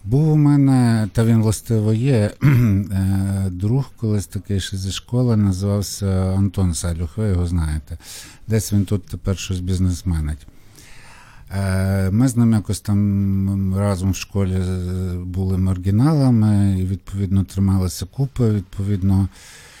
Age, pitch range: 50-69, 95-125 Hz